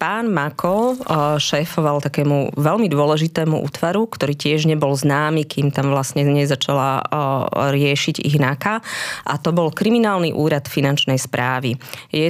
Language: Slovak